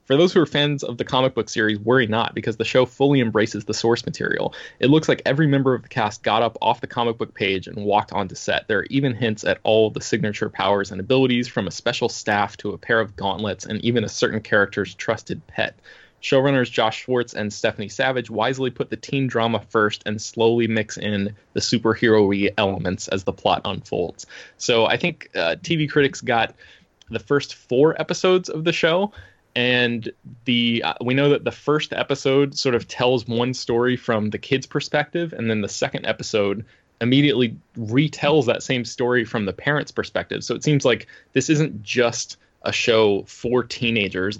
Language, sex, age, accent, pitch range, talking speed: English, male, 20-39, American, 105-130 Hz, 195 wpm